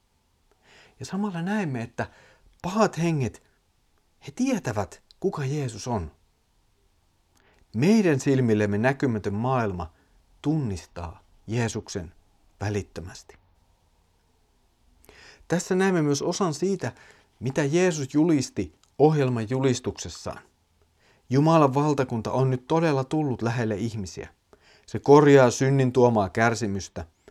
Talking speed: 90 wpm